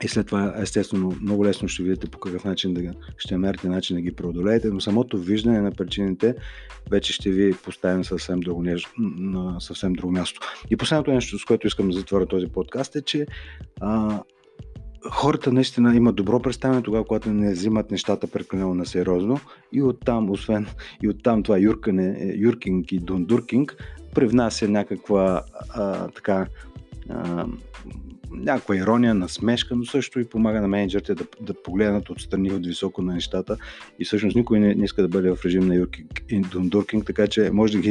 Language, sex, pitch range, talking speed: Bulgarian, male, 90-110 Hz, 175 wpm